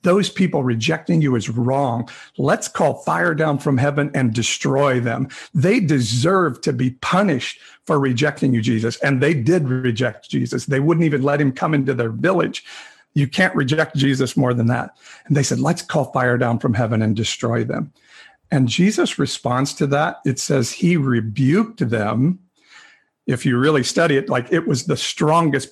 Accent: American